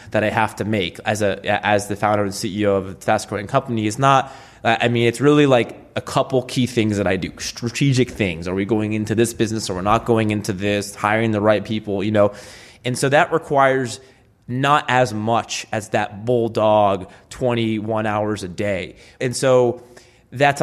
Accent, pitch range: American, 105-125 Hz